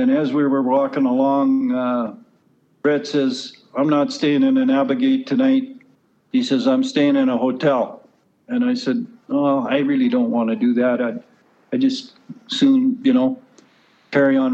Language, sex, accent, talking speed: English, male, American, 175 wpm